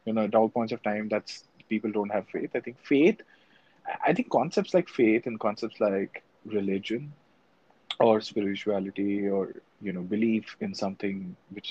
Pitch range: 100-115 Hz